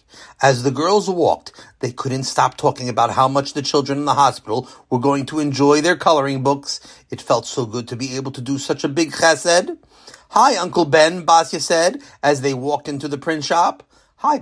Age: 40-59